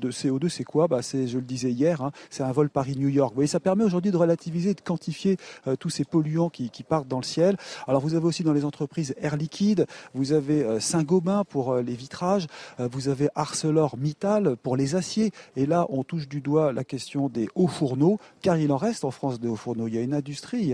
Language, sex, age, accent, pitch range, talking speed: French, male, 40-59, French, 130-170 Hz, 245 wpm